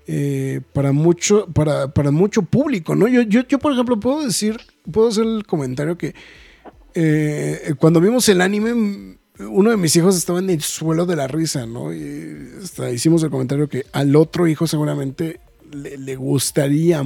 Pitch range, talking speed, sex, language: 140-195 Hz, 175 wpm, male, Spanish